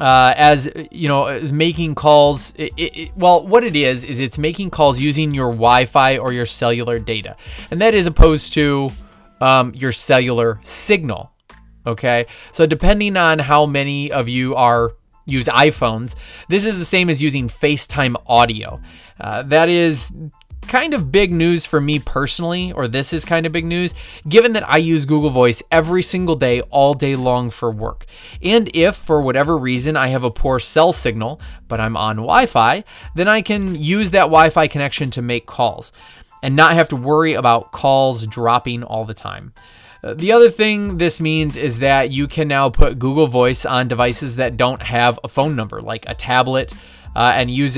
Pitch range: 120-160 Hz